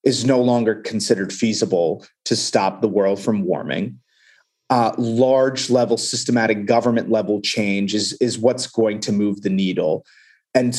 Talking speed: 150 wpm